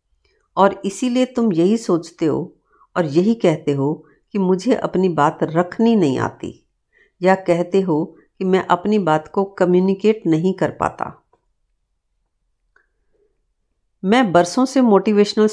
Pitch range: 155-220 Hz